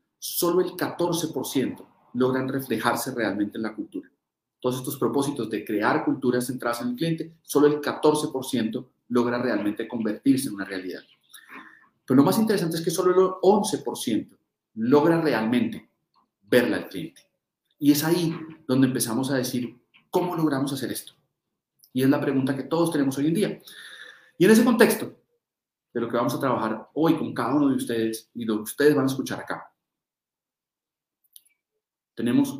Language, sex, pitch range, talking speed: Spanish, male, 115-170 Hz, 160 wpm